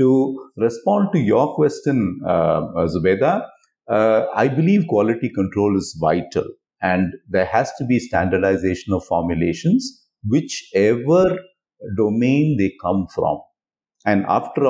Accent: Indian